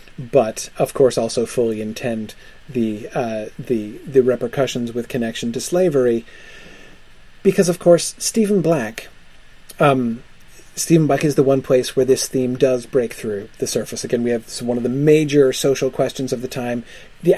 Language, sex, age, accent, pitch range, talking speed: English, male, 30-49, American, 120-155 Hz, 165 wpm